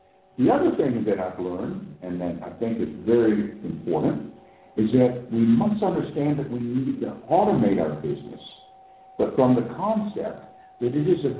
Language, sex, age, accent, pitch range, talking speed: English, male, 60-79, American, 100-160 Hz, 175 wpm